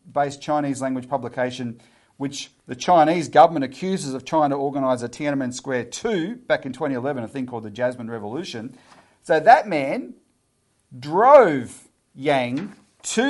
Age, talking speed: 40-59, 145 wpm